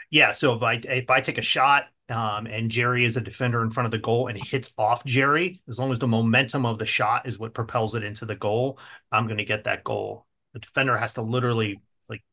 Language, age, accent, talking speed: English, 30-49, American, 250 wpm